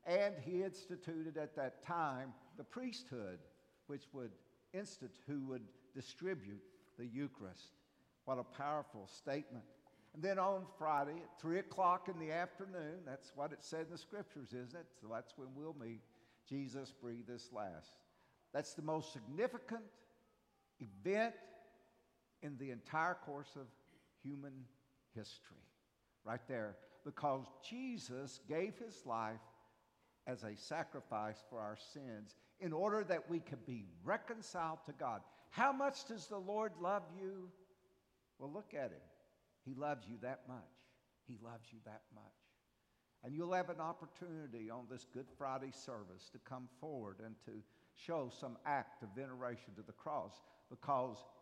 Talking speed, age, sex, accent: 150 wpm, 60-79, male, American